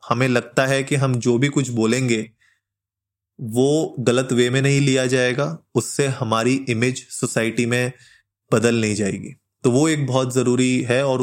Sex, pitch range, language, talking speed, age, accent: male, 120-145 Hz, Hindi, 165 wpm, 20-39, native